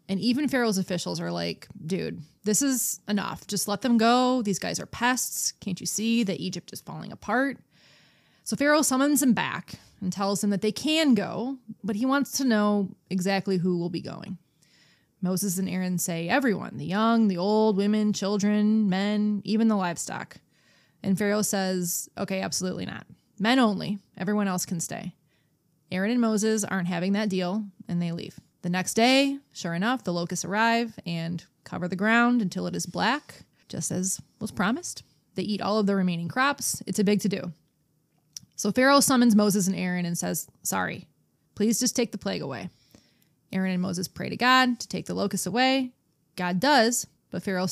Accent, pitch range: American, 180-225 Hz